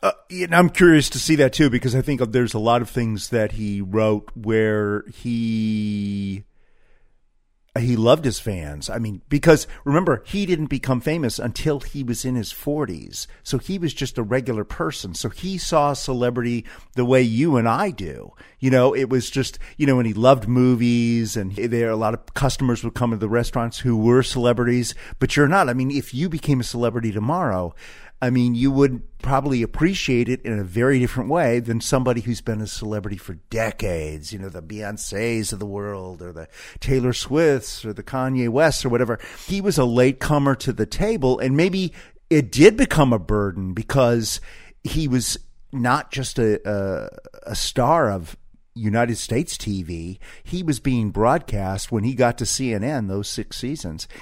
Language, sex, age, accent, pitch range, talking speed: English, male, 40-59, American, 110-140 Hz, 185 wpm